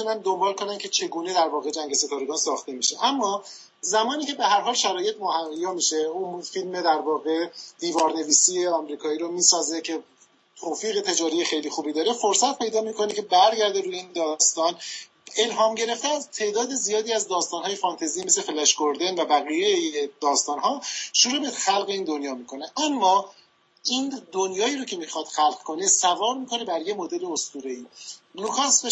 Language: Persian